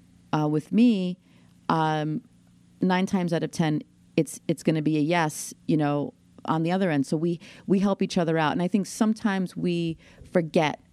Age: 30-49